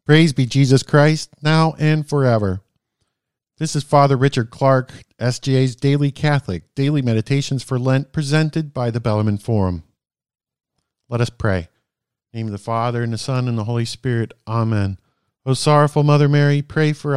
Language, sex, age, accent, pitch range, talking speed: English, male, 50-69, American, 110-145 Hz, 165 wpm